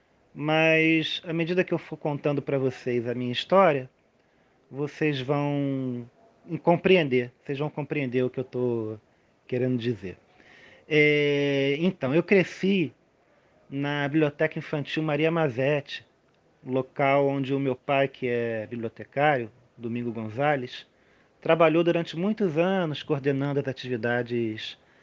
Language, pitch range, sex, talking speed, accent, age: Portuguese, 130-170 Hz, male, 115 wpm, Brazilian, 40-59